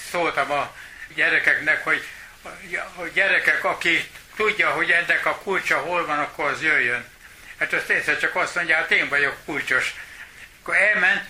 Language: Hungarian